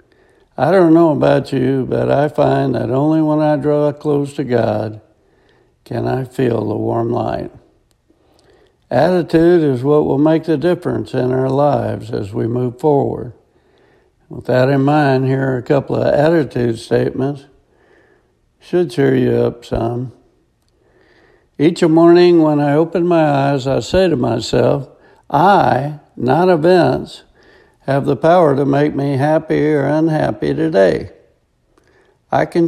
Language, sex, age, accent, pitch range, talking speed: English, male, 60-79, American, 130-165 Hz, 145 wpm